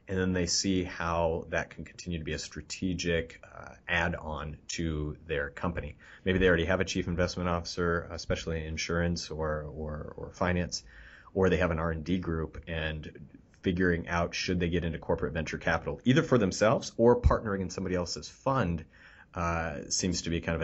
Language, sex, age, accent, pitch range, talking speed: English, male, 30-49, American, 85-100 Hz, 180 wpm